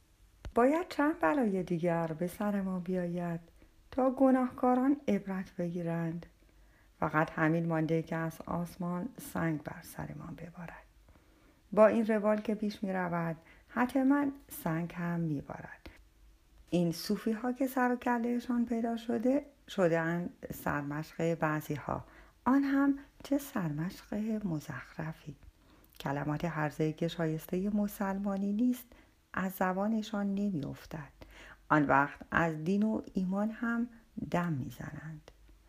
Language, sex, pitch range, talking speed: Persian, female, 160-235 Hz, 115 wpm